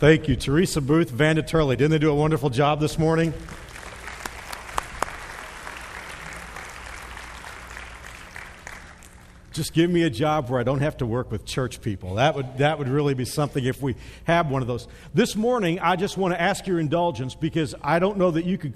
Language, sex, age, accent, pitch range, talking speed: English, male, 50-69, American, 135-180 Hz, 180 wpm